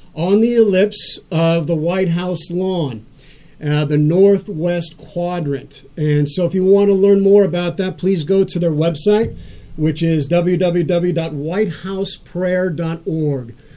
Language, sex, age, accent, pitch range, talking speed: English, male, 40-59, American, 150-180 Hz, 130 wpm